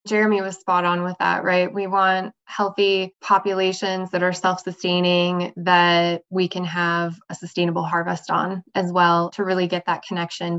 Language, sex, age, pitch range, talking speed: English, female, 20-39, 175-190 Hz, 165 wpm